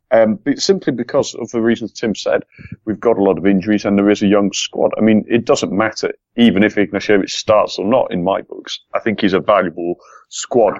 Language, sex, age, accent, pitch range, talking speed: English, male, 30-49, British, 95-120 Hz, 245 wpm